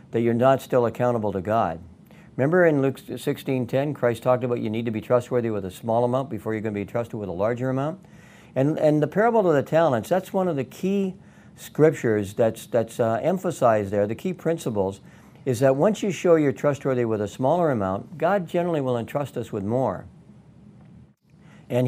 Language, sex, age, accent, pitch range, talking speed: English, male, 60-79, American, 115-145 Hz, 200 wpm